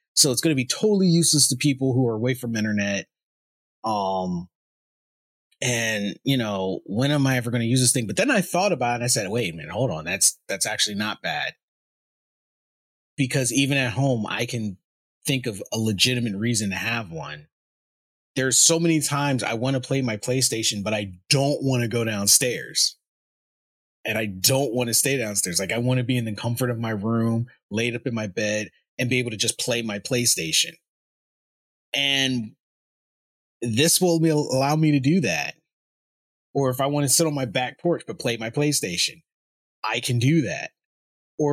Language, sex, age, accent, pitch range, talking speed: English, male, 30-49, American, 110-145 Hz, 195 wpm